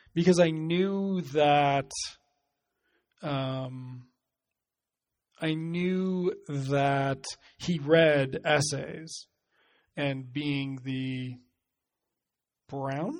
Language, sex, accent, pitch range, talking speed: English, male, American, 135-180 Hz, 70 wpm